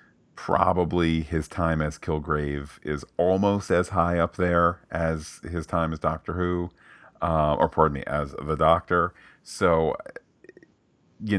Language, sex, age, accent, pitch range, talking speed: English, male, 40-59, American, 75-85 Hz, 135 wpm